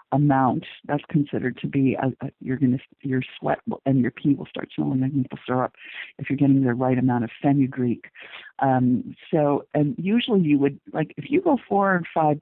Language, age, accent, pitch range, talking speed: English, 50-69, American, 140-170 Hz, 210 wpm